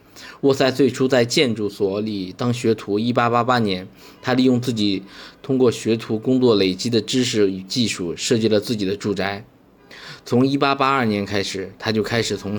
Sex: male